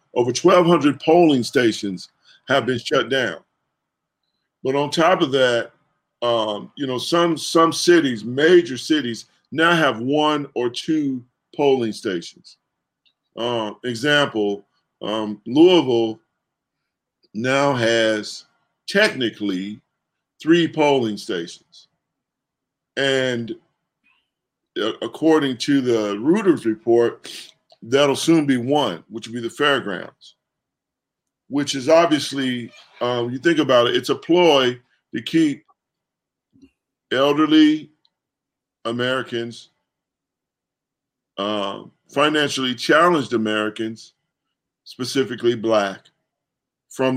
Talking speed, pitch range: 95 wpm, 115-150 Hz